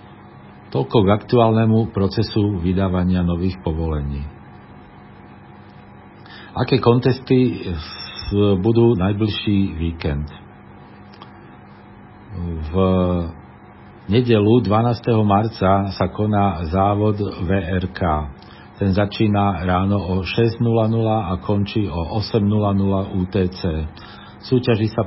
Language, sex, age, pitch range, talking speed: Slovak, male, 50-69, 90-110 Hz, 75 wpm